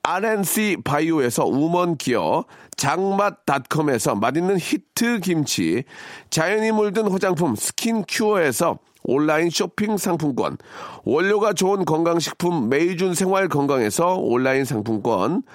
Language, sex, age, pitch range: Korean, male, 40-59, 170-215 Hz